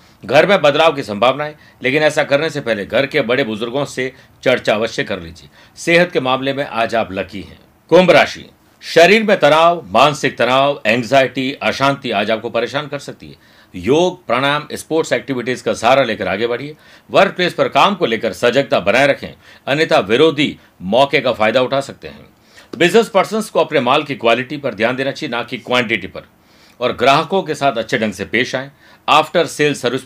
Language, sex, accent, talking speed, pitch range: Hindi, male, native, 190 wpm, 120-155 Hz